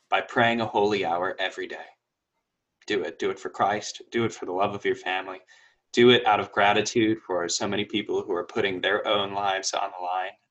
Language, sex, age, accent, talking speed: English, male, 20-39, American, 225 wpm